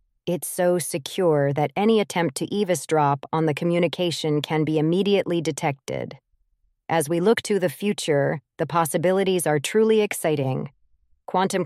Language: English